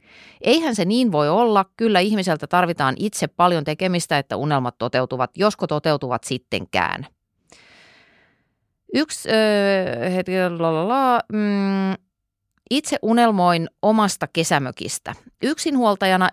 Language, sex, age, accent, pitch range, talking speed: Finnish, female, 30-49, native, 150-210 Hz, 80 wpm